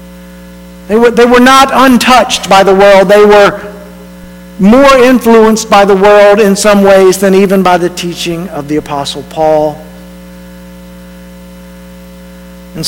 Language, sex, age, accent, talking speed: English, male, 50-69, American, 130 wpm